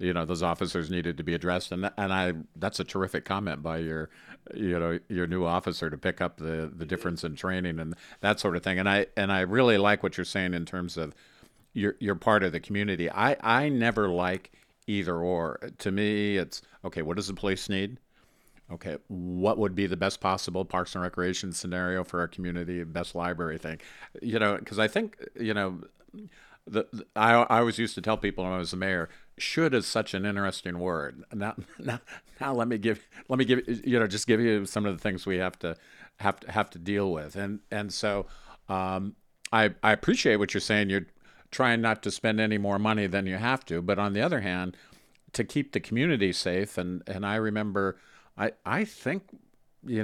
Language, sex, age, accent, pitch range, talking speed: English, male, 50-69, American, 90-105 Hz, 215 wpm